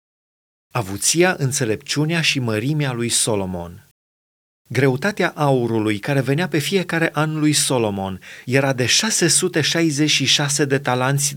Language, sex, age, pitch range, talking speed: Romanian, male, 30-49, 125-155 Hz, 105 wpm